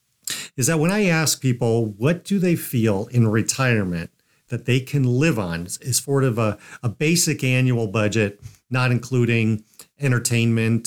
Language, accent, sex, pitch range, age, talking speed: English, American, male, 110-135 Hz, 50-69, 155 wpm